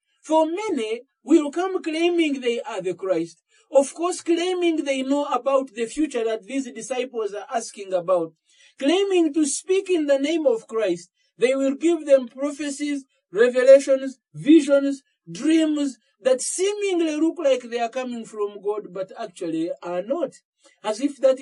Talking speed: 155 wpm